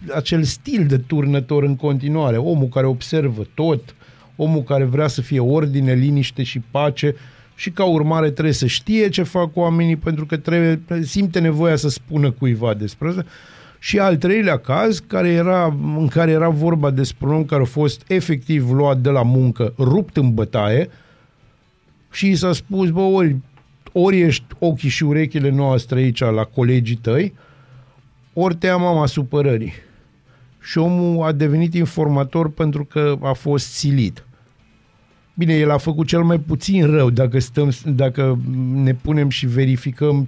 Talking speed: 160 wpm